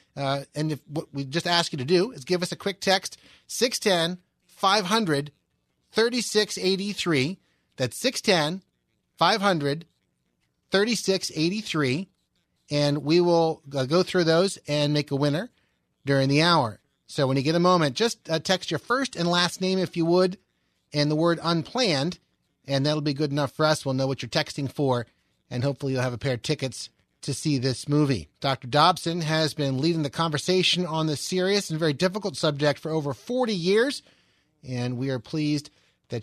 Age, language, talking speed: 30-49, English, 165 wpm